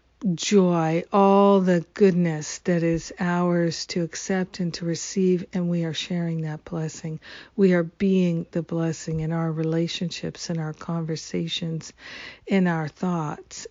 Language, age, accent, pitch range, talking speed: English, 50-69, American, 165-190 Hz, 140 wpm